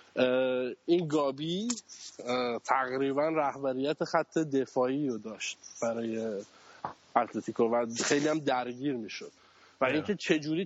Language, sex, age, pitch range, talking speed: Persian, male, 20-39, 130-160 Hz, 95 wpm